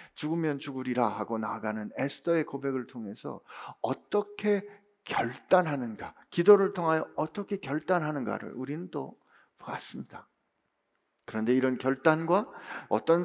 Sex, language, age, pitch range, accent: male, Korean, 50-69, 120-180 Hz, native